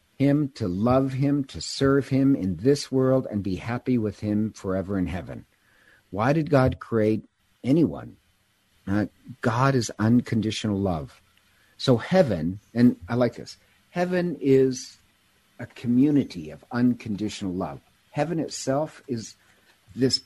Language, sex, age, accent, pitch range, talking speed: English, male, 50-69, American, 100-130 Hz, 135 wpm